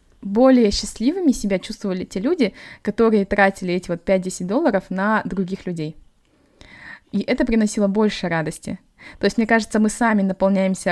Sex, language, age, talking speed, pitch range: female, Russian, 20-39, 150 wpm, 190-235 Hz